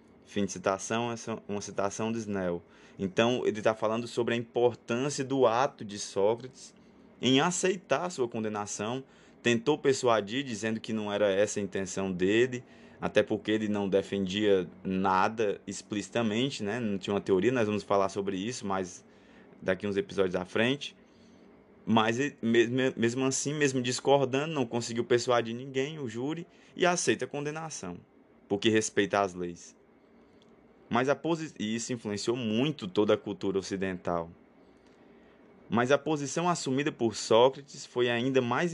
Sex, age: male, 20-39